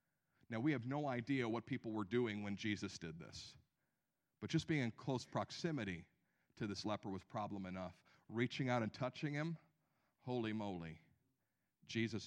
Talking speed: 160 wpm